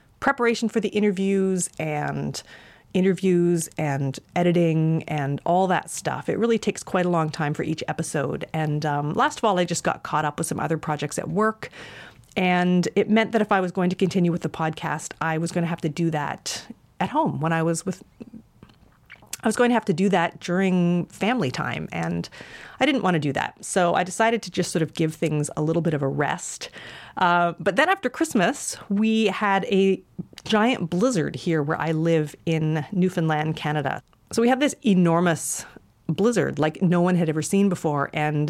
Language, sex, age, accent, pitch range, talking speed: English, female, 30-49, American, 150-195 Hz, 200 wpm